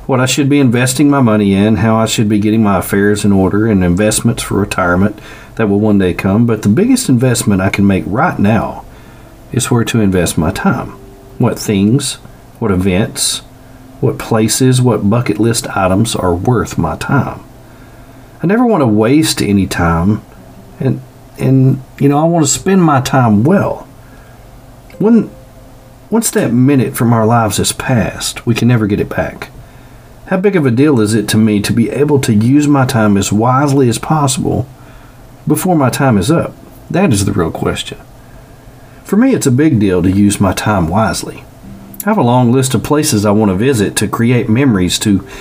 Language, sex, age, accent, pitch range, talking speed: English, male, 50-69, American, 105-135 Hz, 190 wpm